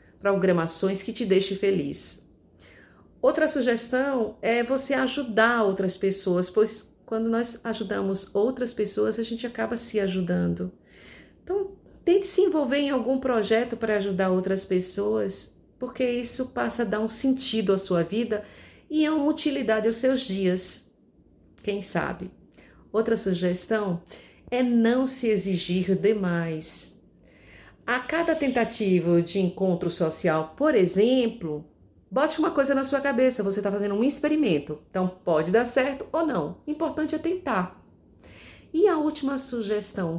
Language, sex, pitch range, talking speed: Portuguese, female, 185-255 Hz, 140 wpm